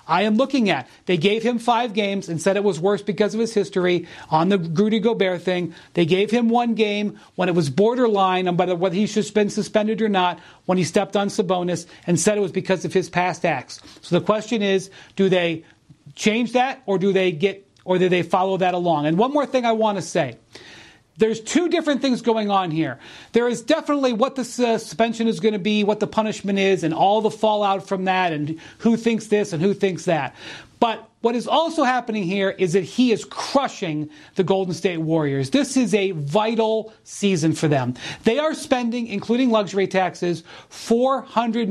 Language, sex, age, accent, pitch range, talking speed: English, male, 40-59, American, 180-230 Hz, 210 wpm